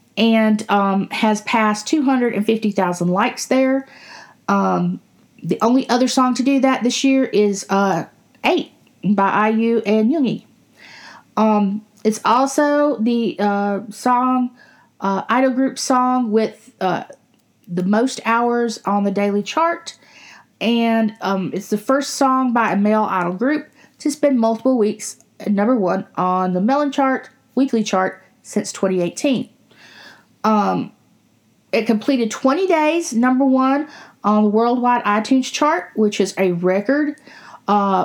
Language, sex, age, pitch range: English, female, 40-59, 205-260 Hz